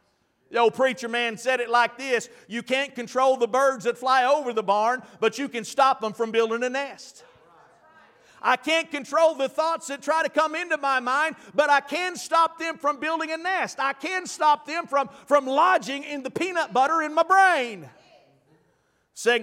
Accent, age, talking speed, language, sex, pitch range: American, 50-69, 195 wpm, English, male, 245-290 Hz